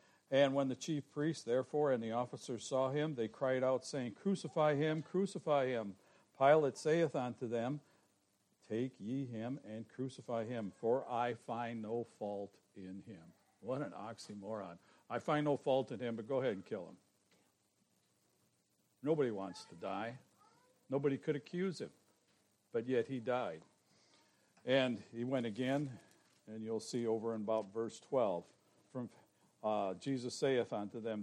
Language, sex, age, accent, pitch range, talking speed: English, male, 60-79, American, 105-140 Hz, 155 wpm